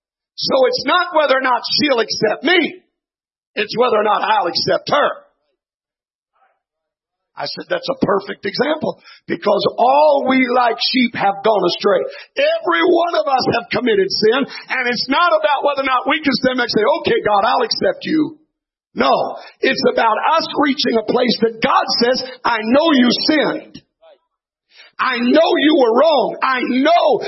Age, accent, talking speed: 50-69, American, 165 wpm